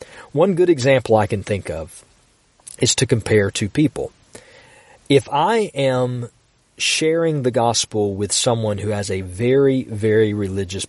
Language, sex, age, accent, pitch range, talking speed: English, male, 40-59, American, 105-135 Hz, 145 wpm